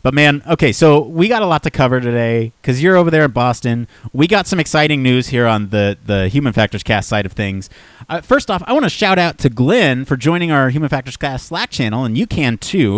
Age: 30-49